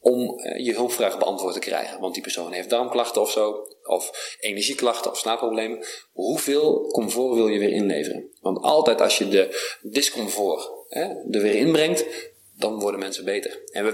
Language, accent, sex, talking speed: Dutch, Dutch, male, 165 wpm